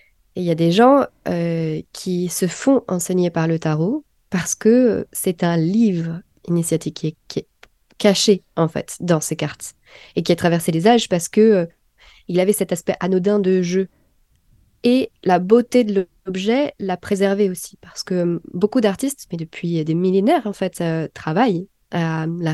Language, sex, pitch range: French, female, 170-205 Hz